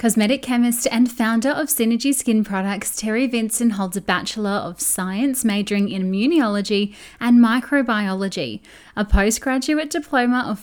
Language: English